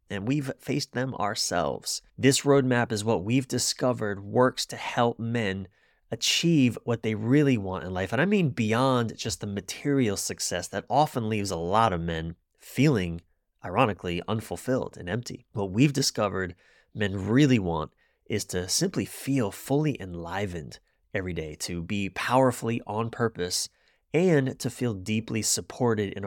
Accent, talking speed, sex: American, 155 wpm, male